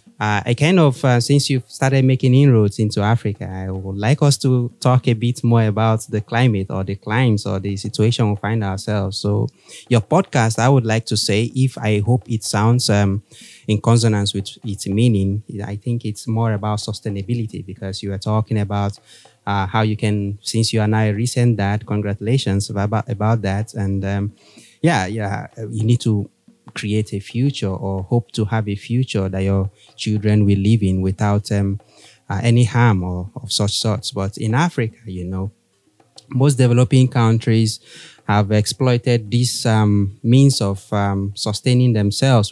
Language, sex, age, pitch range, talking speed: English, male, 20-39, 100-120 Hz, 175 wpm